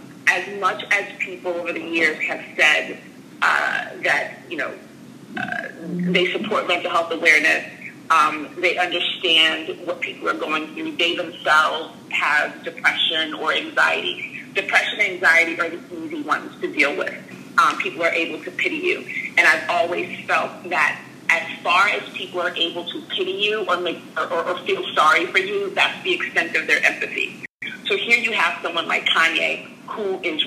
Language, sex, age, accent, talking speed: English, female, 30-49, American, 175 wpm